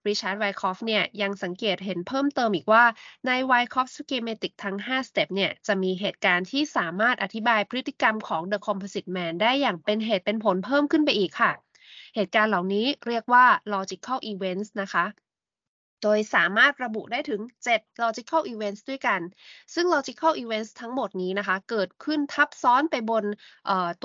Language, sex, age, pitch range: Thai, female, 20-39, 195-250 Hz